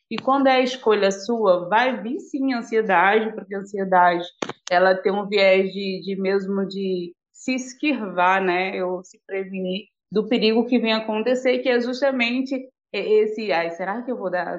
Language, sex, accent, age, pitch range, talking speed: Portuguese, female, Brazilian, 20-39, 195-255 Hz, 175 wpm